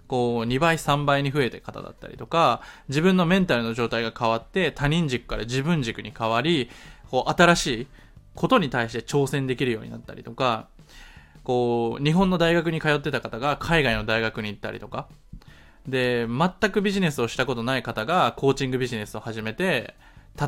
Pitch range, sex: 120-195 Hz, male